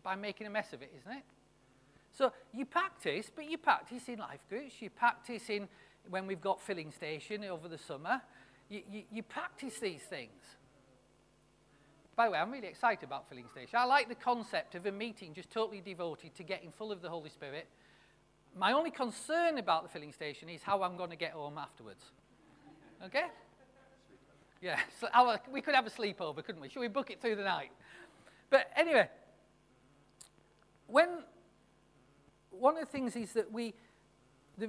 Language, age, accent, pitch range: English, 40-59, British, 175-240 Hz